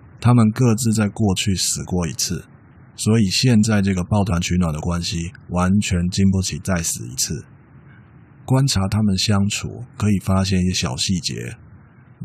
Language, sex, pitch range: Chinese, male, 90-115 Hz